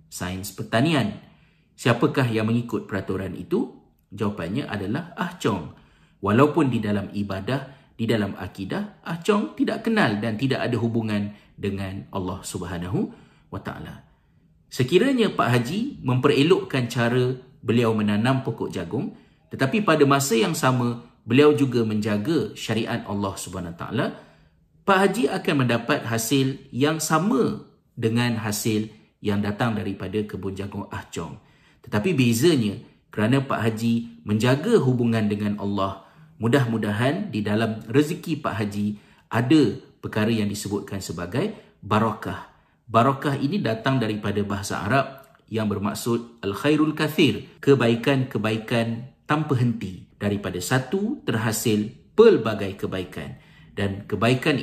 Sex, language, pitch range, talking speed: male, Malay, 105-140 Hz, 115 wpm